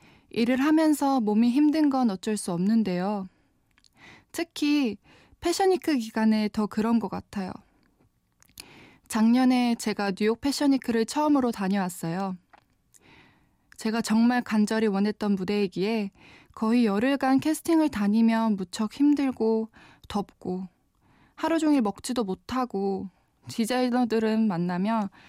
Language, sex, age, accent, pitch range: Korean, female, 20-39, native, 205-270 Hz